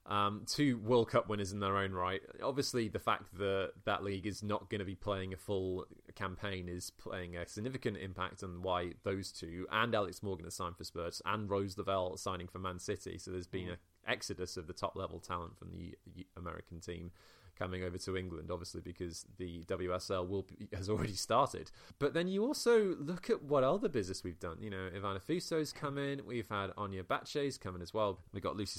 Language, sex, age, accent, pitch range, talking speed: English, male, 20-39, British, 90-110 Hz, 210 wpm